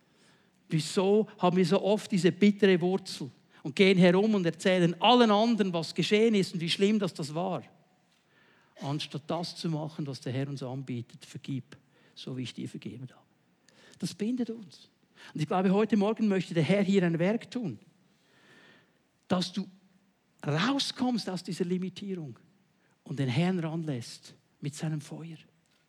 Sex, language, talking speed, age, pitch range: male, German, 160 wpm, 60-79, 140-185 Hz